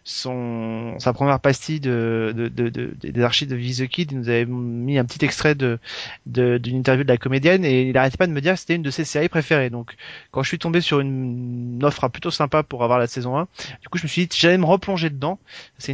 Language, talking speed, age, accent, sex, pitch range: French, 265 wpm, 30-49, French, male, 130-160 Hz